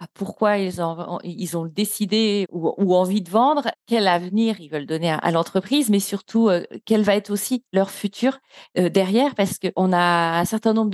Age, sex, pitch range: 40-59, female, 180-220 Hz